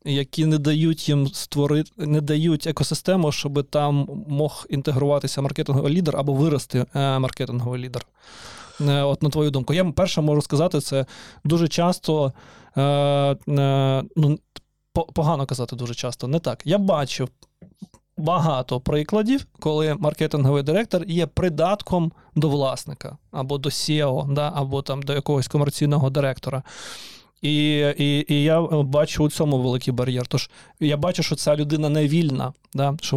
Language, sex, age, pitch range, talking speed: Ukrainian, male, 20-39, 135-155 Hz, 135 wpm